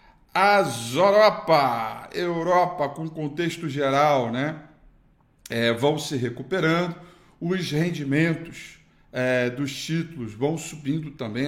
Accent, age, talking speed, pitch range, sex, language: Brazilian, 50-69, 100 wpm, 120-145 Hz, male, Portuguese